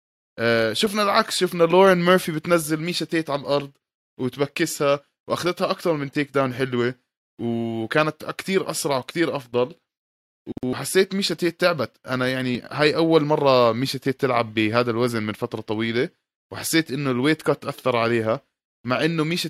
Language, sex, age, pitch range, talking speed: Arabic, male, 20-39, 110-140 Hz, 135 wpm